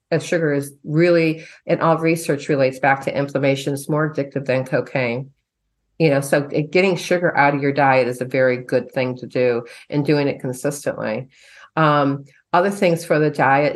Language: English